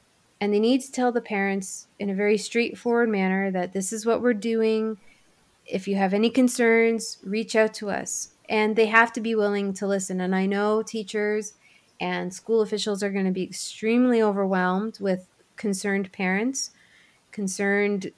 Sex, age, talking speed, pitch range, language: female, 30-49, 170 wpm, 195-225 Hz, English